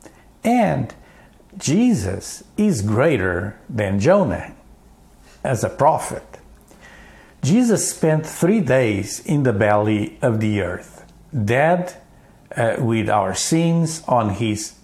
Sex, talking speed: male, 105 wpm